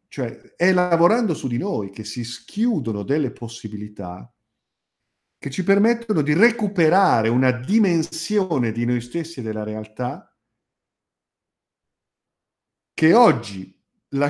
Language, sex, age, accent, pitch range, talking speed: Italian, male, 50-69, native, 105-150 Hz, 115 wpm